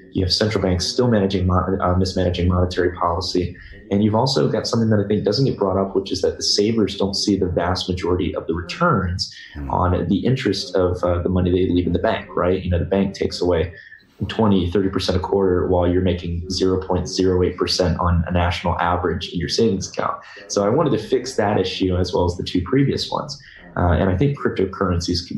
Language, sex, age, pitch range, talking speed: English, male, 20-39, 90-100 Hz, 210 wpm